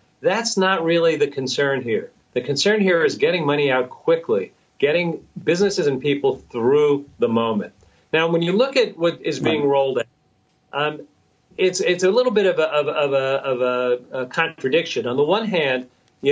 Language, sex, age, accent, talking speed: English, male, 40-59, American, 190 wpm